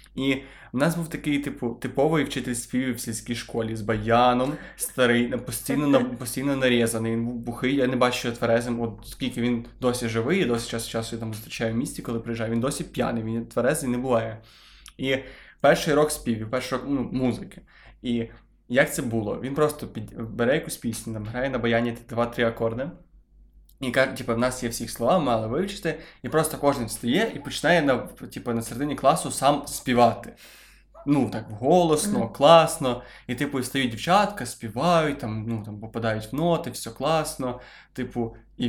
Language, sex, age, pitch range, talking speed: Ukrainian, male, 20-39, 115-140 Hz, 170 wpm